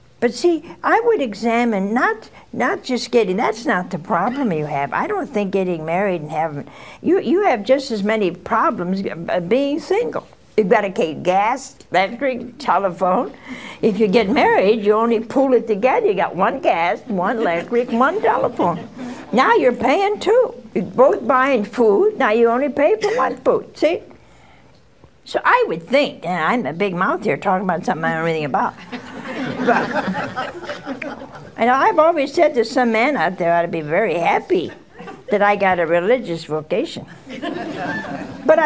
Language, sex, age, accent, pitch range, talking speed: English, female, 60-79, American, 190-280 Hz, 175 wpm